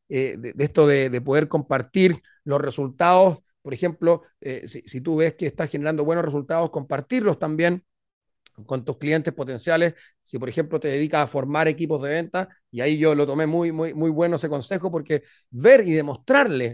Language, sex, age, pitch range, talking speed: Spanish, male, 40-59, 140-170 Hz, 190 wpm